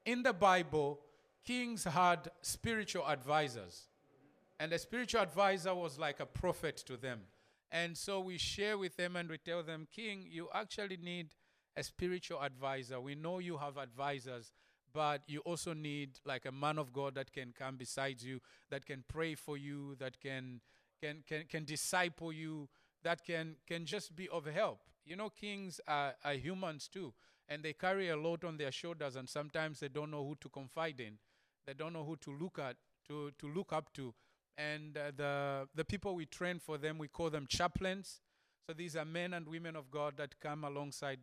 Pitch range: 140-175 Hz